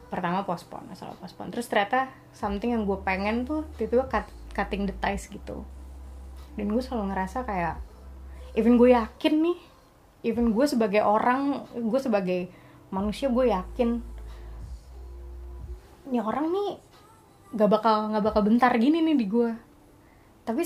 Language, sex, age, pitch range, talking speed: Indonesian, female, 20-39, 185-245 Hz, 135 wpm